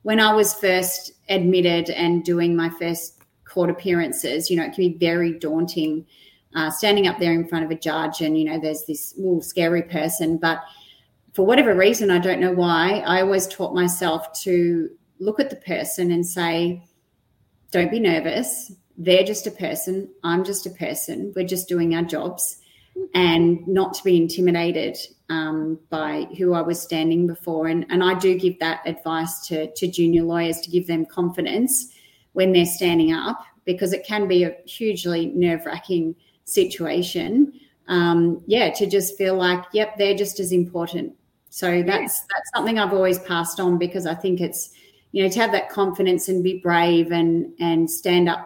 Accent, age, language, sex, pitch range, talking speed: Australian, 30-49, English, female, 165-190 Hz, 180 wpm